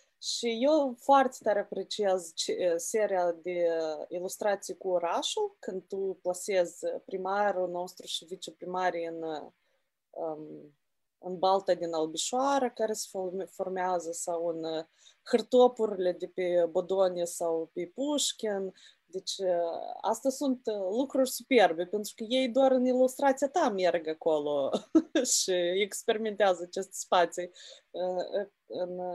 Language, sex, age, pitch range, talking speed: Romanian, female, 20-39, 180-265 Hz, 110 wpm